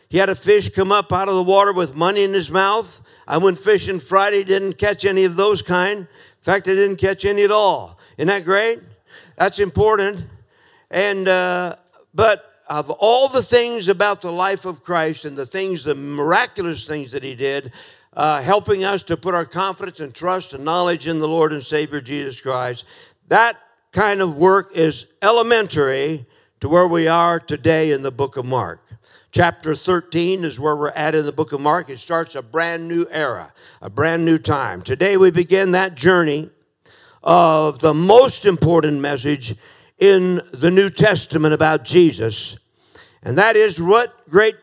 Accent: American